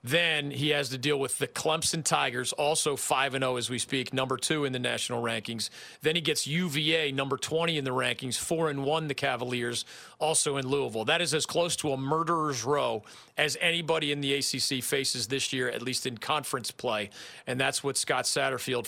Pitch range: 130-160 Hz